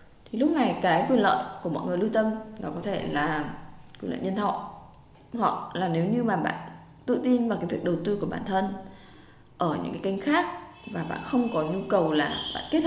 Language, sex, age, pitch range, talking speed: Vietnamese, female, 20-39, 185-255 Hz, 230 wpm